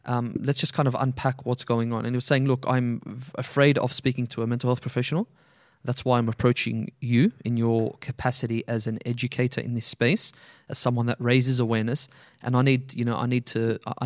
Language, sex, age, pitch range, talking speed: English, male, 20-39, 120-140 Hz, 220 wpm